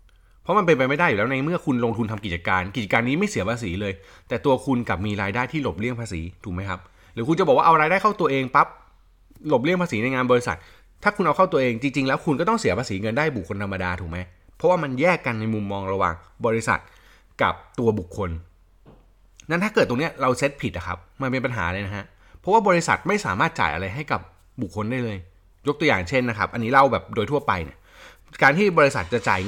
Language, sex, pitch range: Thai, male, 90-125 Hz